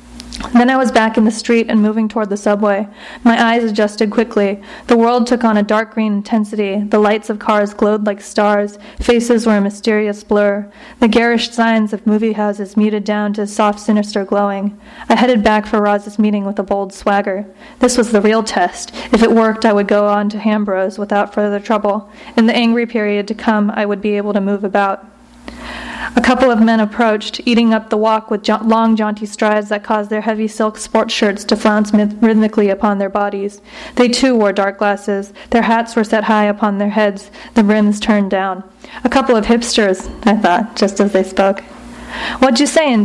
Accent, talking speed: American, 205 wpm